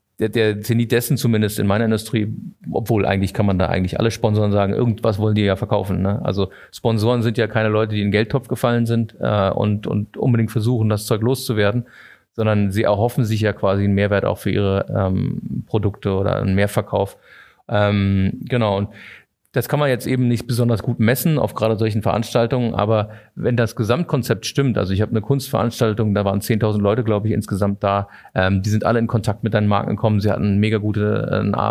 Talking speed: 205 wpm